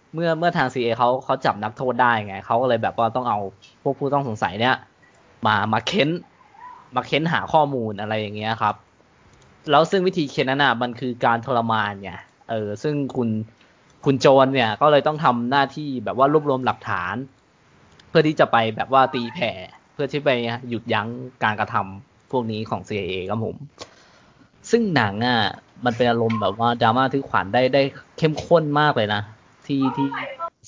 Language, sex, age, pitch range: Thai, male, 20-39, 115-150 Hz